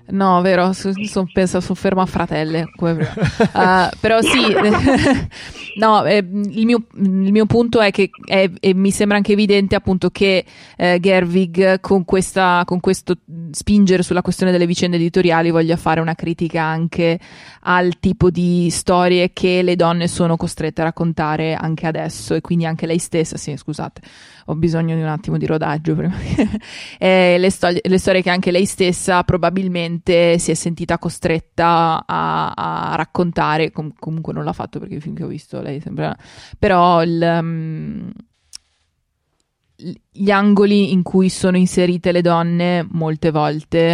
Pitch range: 160-190 Hz